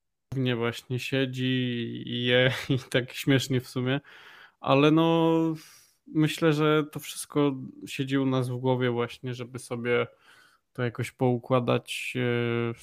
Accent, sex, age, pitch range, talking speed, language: native, male, 20-39, 120-130 Hz, 130 wpm, Polish